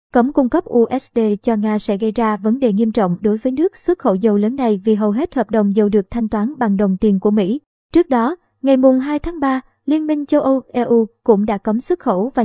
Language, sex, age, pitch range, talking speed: Vietnamese, male, 20-39, 215-255 Hz, 250 wpm